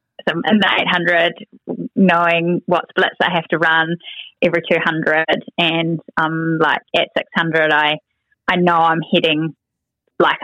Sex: female